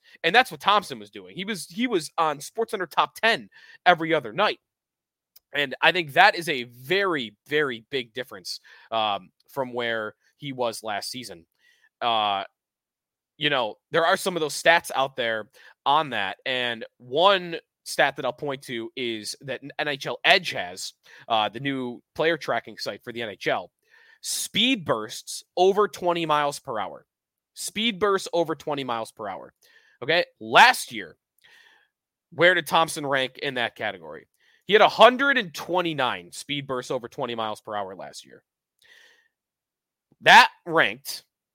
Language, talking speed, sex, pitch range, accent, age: English, 155 wpm, male, 140-215 Hz, American, 20-39